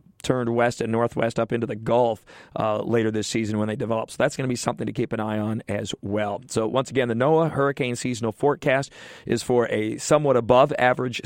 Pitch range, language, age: 115-140 Hz, English, 40-59